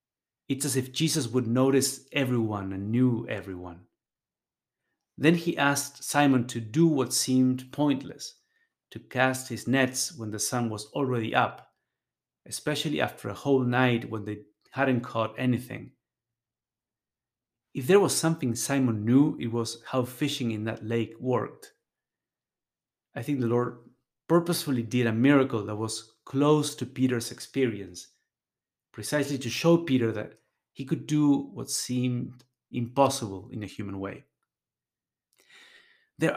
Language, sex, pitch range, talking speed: English, male, 115-140 Hz, 135 wpm